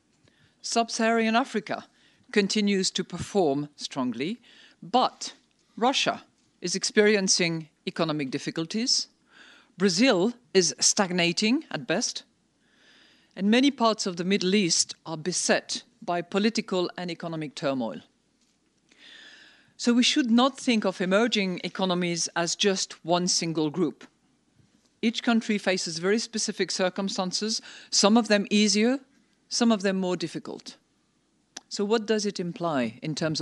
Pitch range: 175-230 Hz